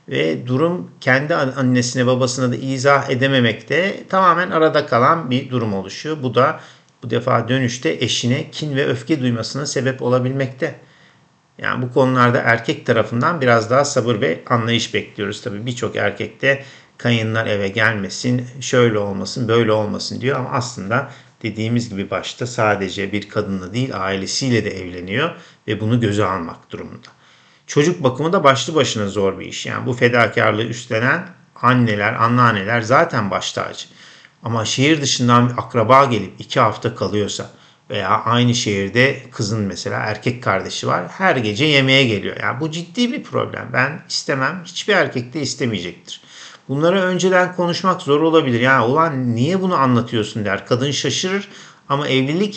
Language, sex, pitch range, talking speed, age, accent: Turkish, male, 115-140 Hz, 150 wpm, 50-69, native